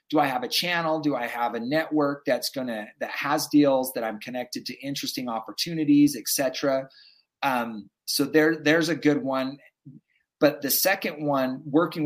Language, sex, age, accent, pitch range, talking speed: English, male, 30-49, American, 130-165 Hz, 175 wpm